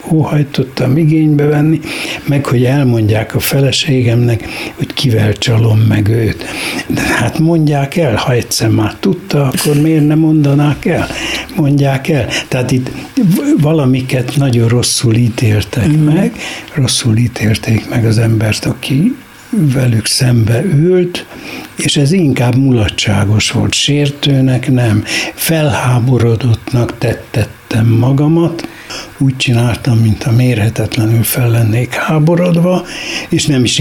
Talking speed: 115 wpm